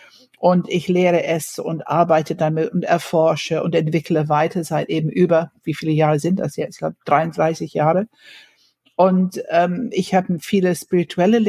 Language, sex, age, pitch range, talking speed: German, female, 60-79, 165-195 Hz, 160 wpm